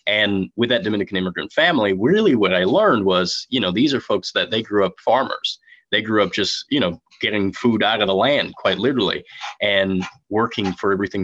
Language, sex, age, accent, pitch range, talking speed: English, male, 20-39, American, 95-105 Hz, 210 wpm